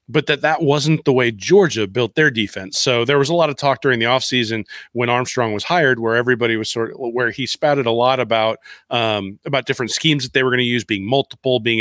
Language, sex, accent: English, male, American